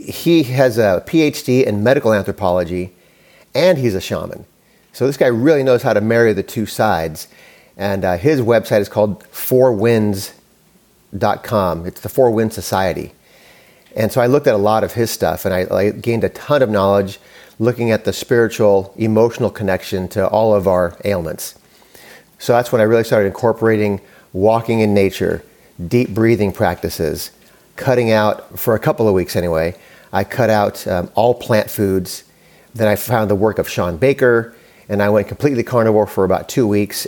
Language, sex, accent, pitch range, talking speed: English, male, American, 100-125 Hz, 175 wpm